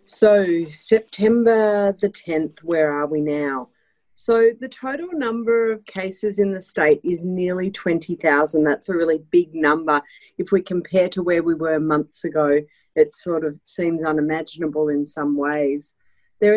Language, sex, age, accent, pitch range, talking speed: English, female, 40-59, Australian, 155-200 Hz, 155 wpm